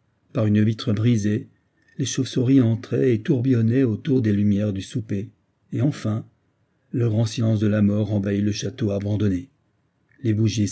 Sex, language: male, French